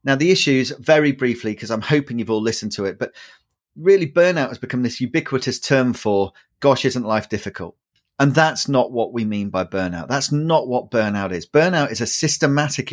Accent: British